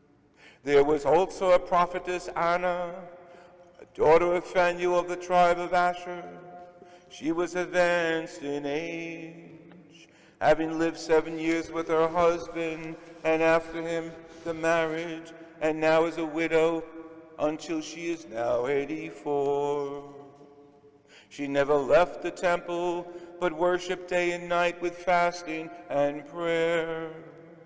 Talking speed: 120 wpm